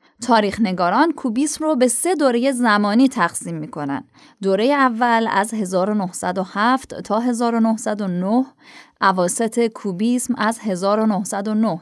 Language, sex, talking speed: Persian, female, 105 wpm